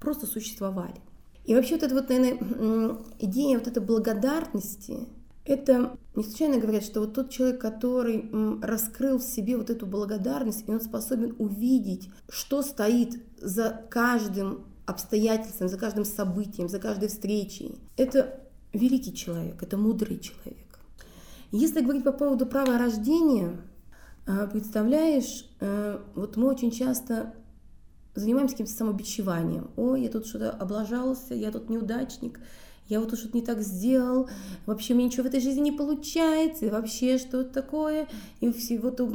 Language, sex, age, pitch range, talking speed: Russian, female, 20-39, 215-260 Hz, 140 wpm